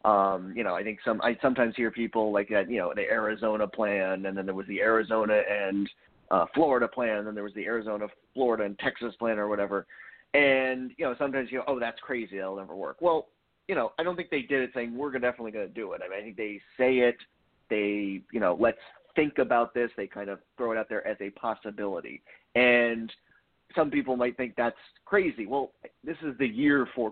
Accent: American